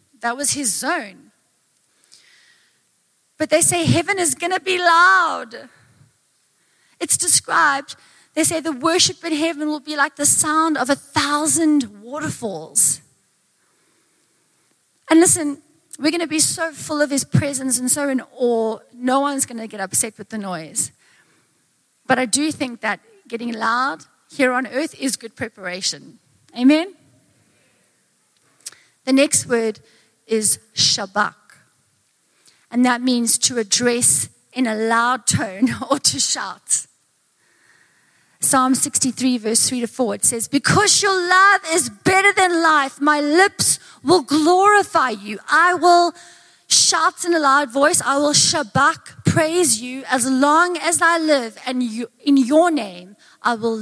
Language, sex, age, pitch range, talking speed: English, female, 30-49, 235-320 Hz, 145 wpm